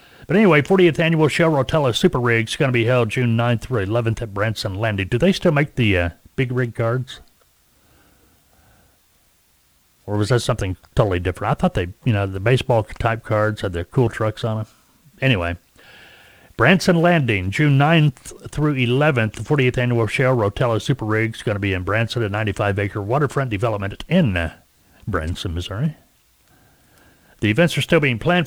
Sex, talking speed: male, 175 wpm